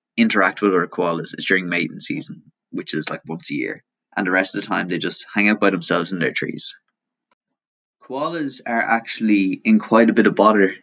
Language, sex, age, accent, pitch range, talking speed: English, male, 20-39, Irish, 95-115 Hz, 210 wpm